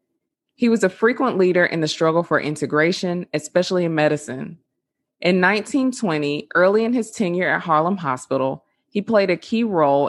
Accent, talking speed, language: American, 160 wpm, English